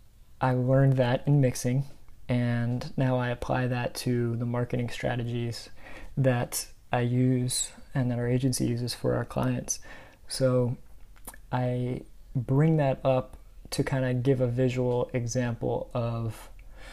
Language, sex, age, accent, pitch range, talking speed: English, male, 20-39, American, 120-135 Hz, 135 wpm